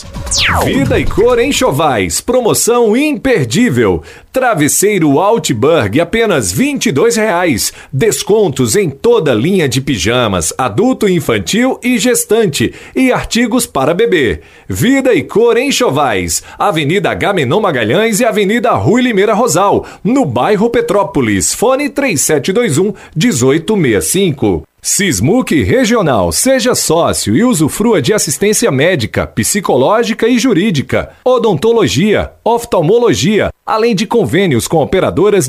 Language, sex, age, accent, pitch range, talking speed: Portuguese, male, 40-59, Brazilian, 195-255 Hz, 105 wpm